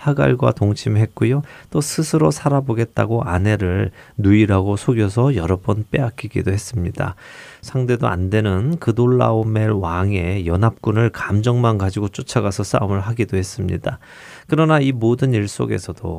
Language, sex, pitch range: Korean, male, 100-130 Hz